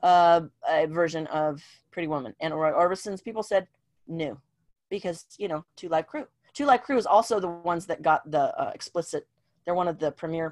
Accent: American